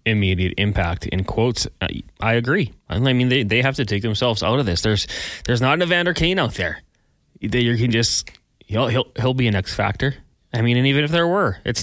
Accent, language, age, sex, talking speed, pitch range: American, English, 20-39, male, 225 wpm, 100-120 Hz